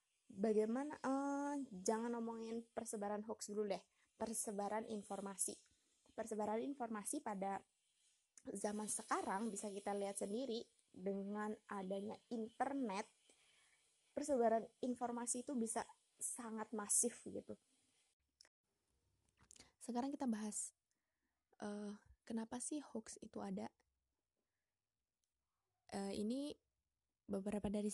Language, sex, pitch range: Indonesian, female, 210-240 Hz